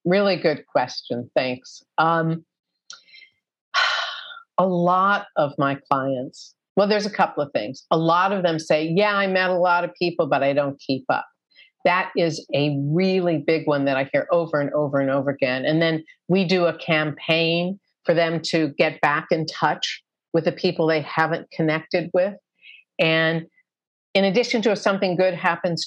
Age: 50-69